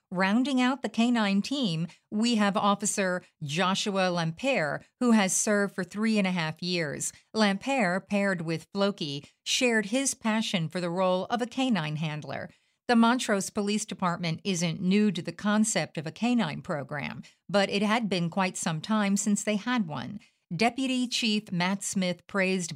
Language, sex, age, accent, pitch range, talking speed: English, female, 50-69, American, 175-220 Hz, 165 wpm